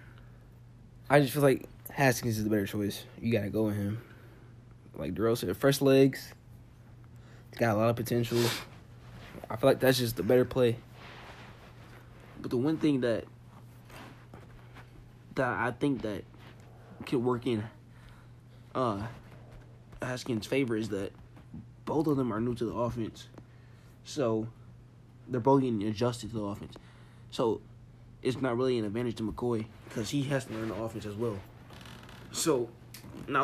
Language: English